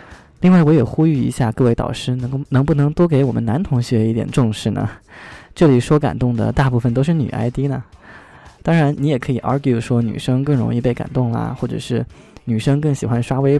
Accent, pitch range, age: native, 115-145 Hz, 20-39